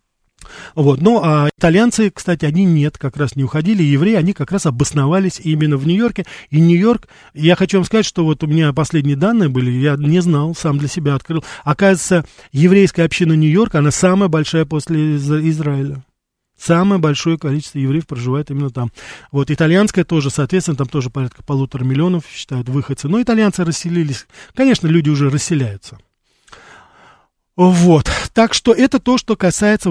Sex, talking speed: male, 160 wpm